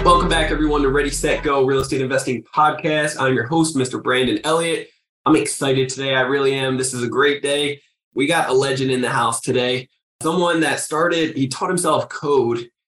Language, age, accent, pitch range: English, 20-39, American, 125-135 Hz